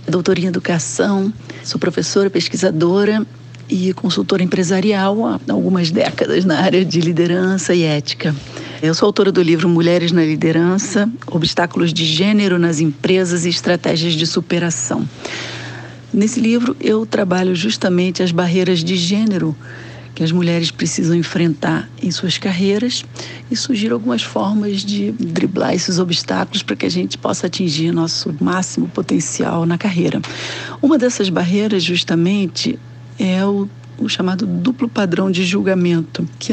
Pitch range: 165-200 Hz